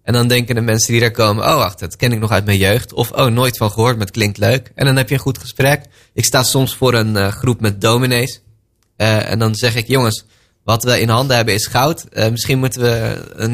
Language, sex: Dutch, male